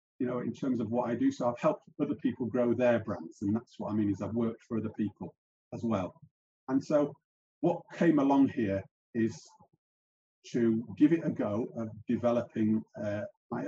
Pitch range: 110-145 Hz